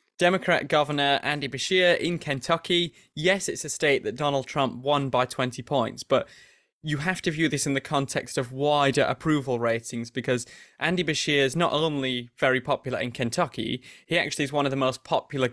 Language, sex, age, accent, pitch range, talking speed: English, male, 20-39, British, 125-150 Hz, 185 wpm